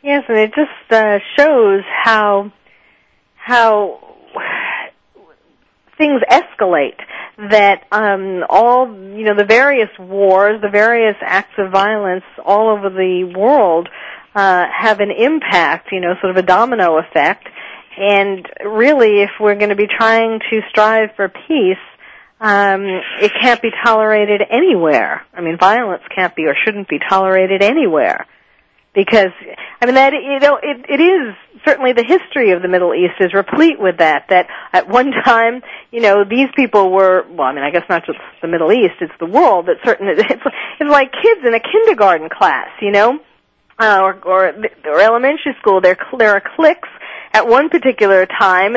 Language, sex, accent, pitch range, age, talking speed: English, female, American, 195-250 Hz, 50-69, 160 wpm